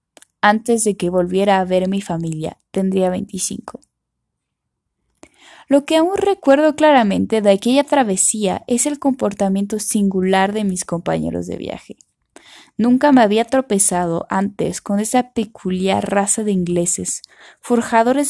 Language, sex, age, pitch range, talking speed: Spanish, female, 10-29, 190-240 Hz, 130 wpm